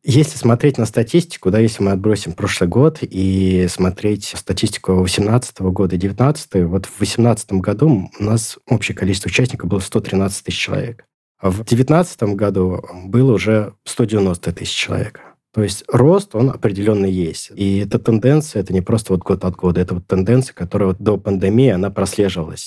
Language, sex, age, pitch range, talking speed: Russian, male, 20-39, 90-110 Hz, 170 wpm